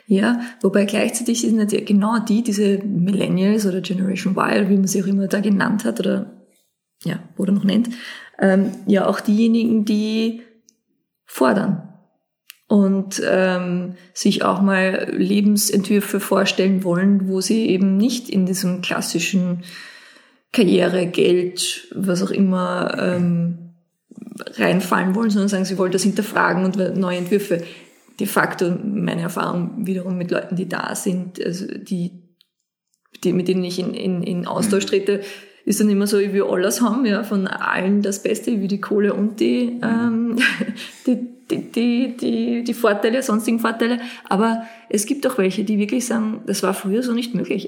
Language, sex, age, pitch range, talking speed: German, female, 20-39, 190-225 Hz, 160 wpm